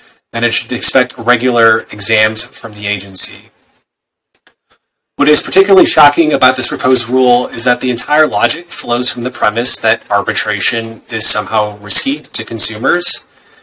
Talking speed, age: 145 wpm, 20-39